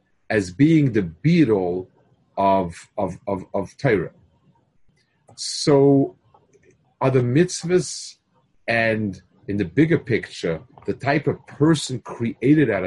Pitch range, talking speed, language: 100-140 Hz, 110 wpm, English